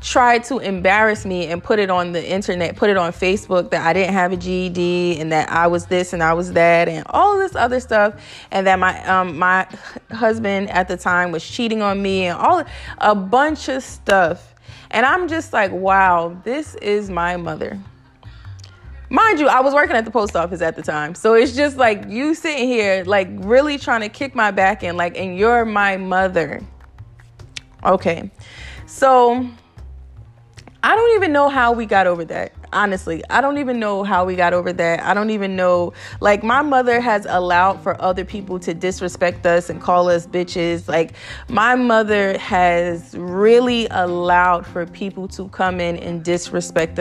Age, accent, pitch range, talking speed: 20-39, American, 175-225 Hz, 190 wpm